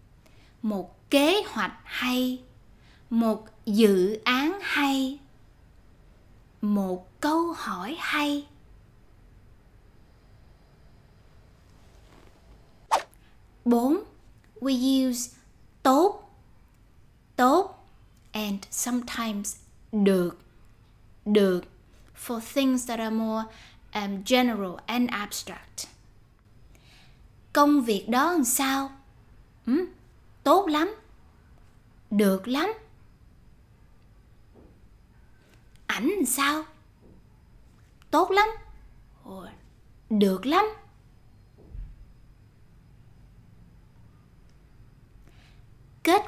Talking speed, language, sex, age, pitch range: 60 wpm, Vietnamese, female, 10-29, 180-290 Hz